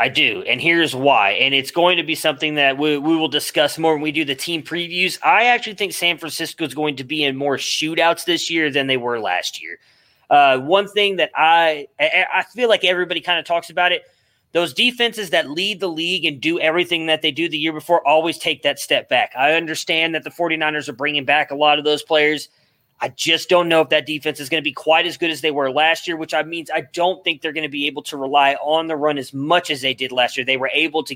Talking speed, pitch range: 260 wpm, 150-180 Hz